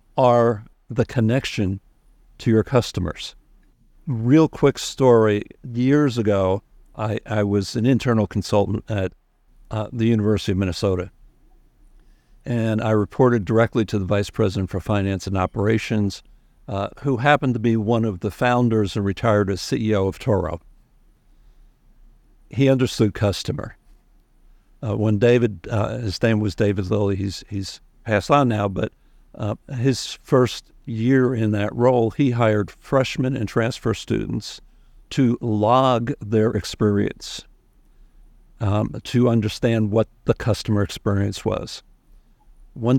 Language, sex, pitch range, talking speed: English, male, 105-120 Hz, 130 wpm